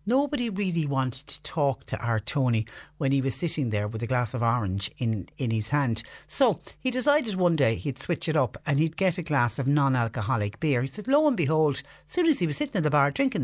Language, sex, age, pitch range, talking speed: English, female, 60-79, 110-145 Hz, 240 wpm